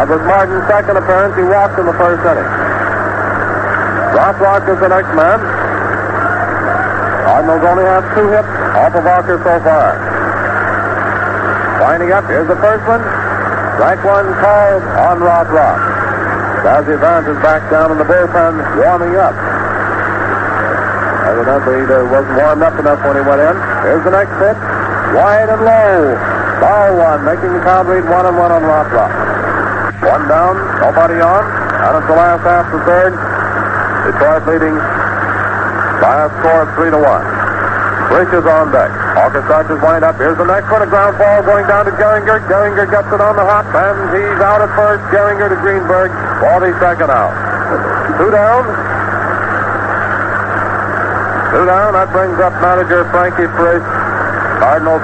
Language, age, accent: English, 60-79, American